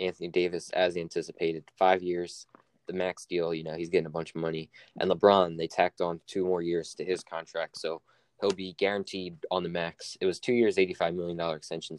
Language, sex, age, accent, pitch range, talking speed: English, male, 20-39, American, 85-95 Hz, 210 wpm